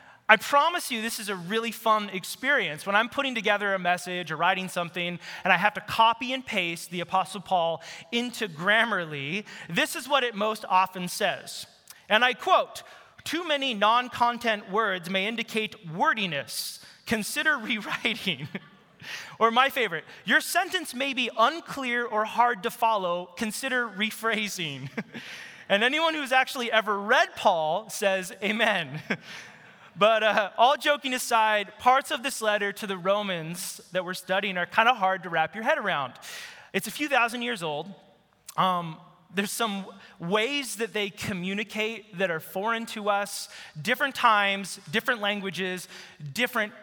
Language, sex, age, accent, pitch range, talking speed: English, male, 30-49, American, 190-240 Hz, 150 wpm